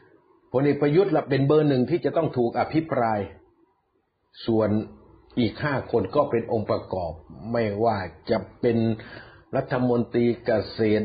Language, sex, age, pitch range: Thai, male, 60-79, 115-165 Hz